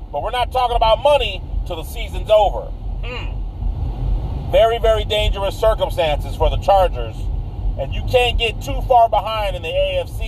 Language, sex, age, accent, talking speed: English, male, 40-59, American, 165 wpm